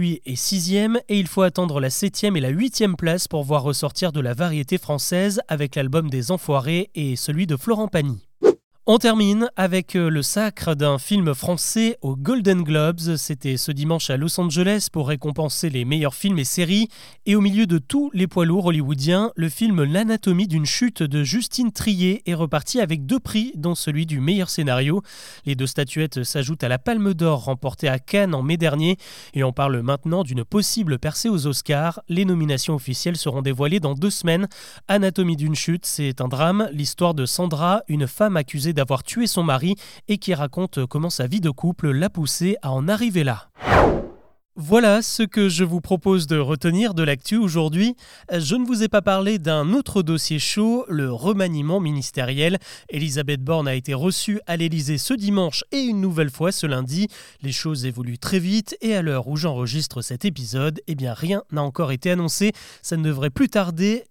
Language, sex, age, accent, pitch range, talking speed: French, male, 30-49, French, 145-200 Hz, 190 wpm